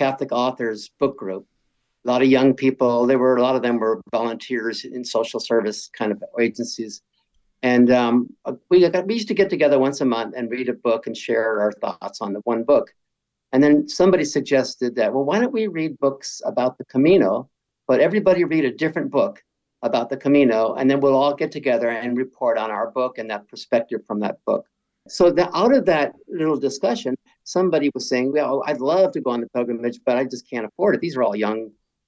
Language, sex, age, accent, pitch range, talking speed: English, male, 50-69, American, 115-140 Hz, 215 wpm